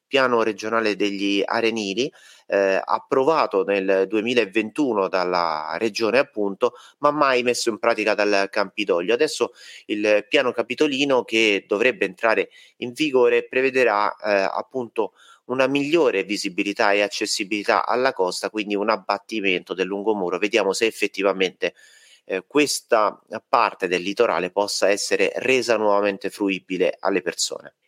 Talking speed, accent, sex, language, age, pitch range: 125 wpm, native, male, Italian, 30-49, 105-130 Hz